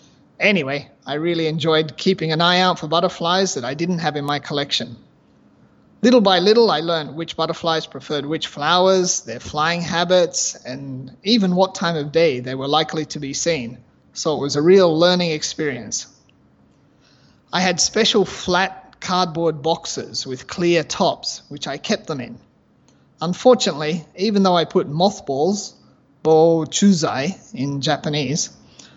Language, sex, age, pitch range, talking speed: English, male, 30-49, 145-185 Hz, 150 wpm